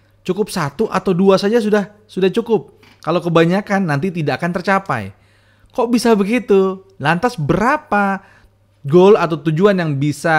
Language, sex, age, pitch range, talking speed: Indonesian, male, 30-49, 125-185 Hz, 140 wpm